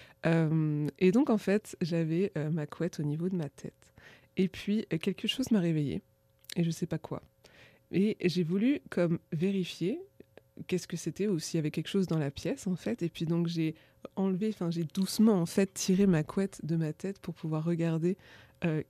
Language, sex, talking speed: French, female, 205 wpm